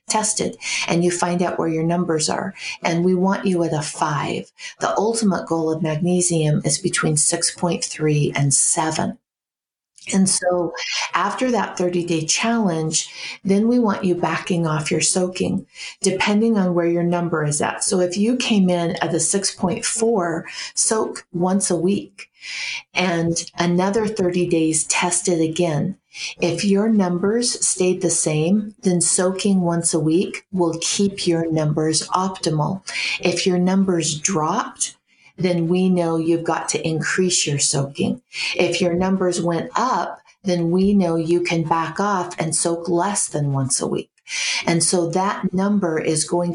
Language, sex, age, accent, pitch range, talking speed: English, female, 50-69, American, 165-190 Hz, 155 wpm